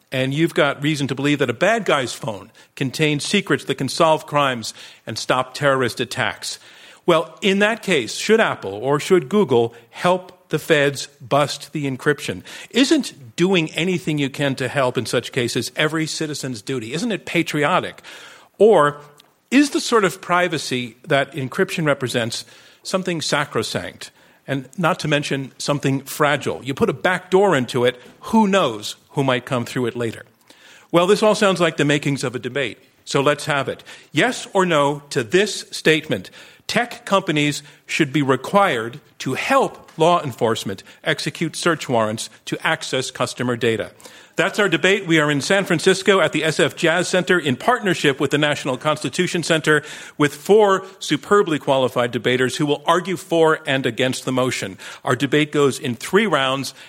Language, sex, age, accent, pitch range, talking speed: English, male, 50-69, American, 135-175 Hz, 170 wpm